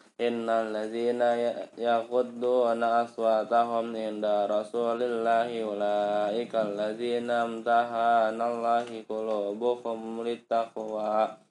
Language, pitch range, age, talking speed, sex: Indonesian, 115-125 Hz, 20-39, 65 wpm, male